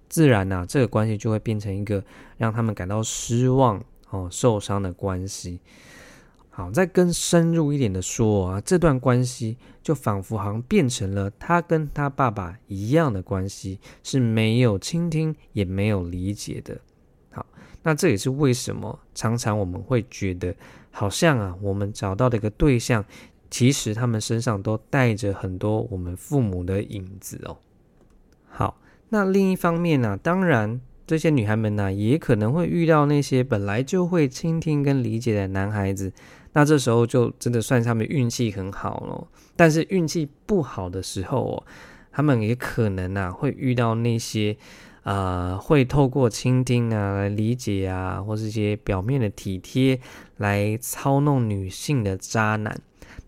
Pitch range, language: 100-140 Hz, Chinese